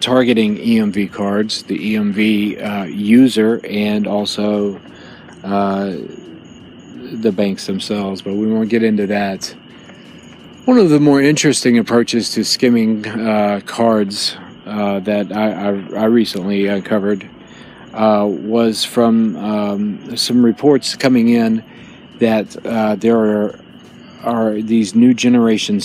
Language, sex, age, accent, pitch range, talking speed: English, male, 40-59, American, 100-115 Hz, 120 wpm